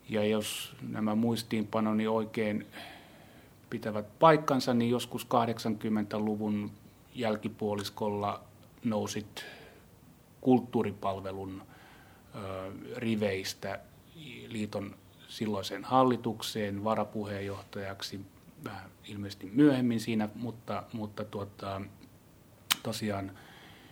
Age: 30-49